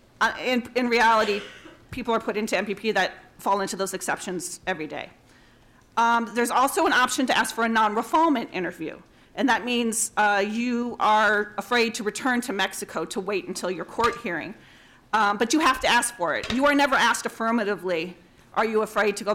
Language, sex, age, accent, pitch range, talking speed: English, female, 40-59, American, 200-250 Hz, 195 wpm